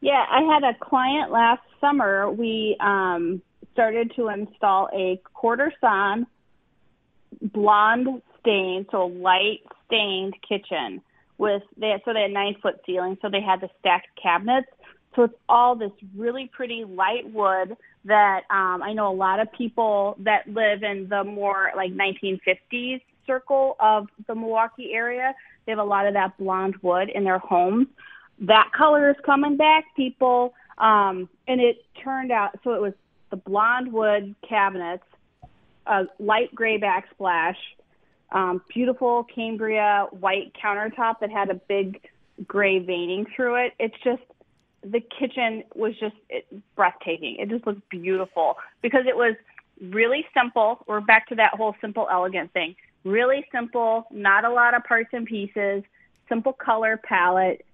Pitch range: 195-240 Hz